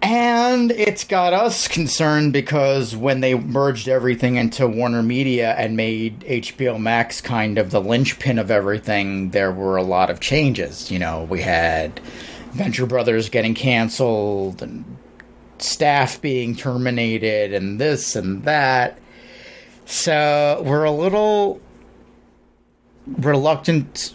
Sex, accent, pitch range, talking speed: male, American, 115-150 Hz, 125 wpm